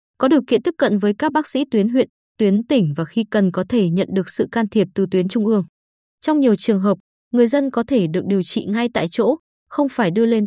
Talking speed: 260 wpm